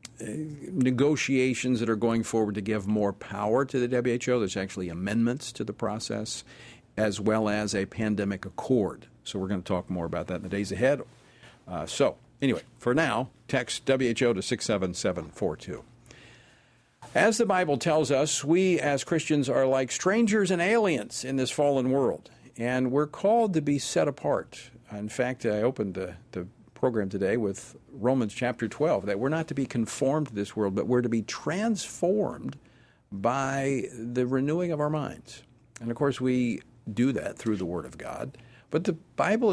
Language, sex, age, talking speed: English, male, 50-69, 175 wpm